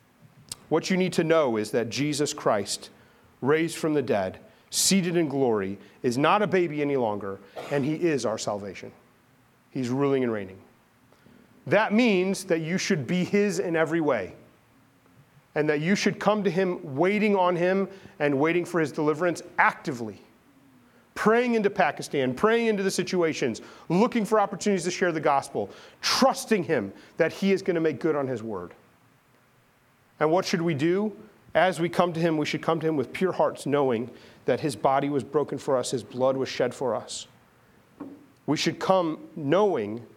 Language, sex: English, male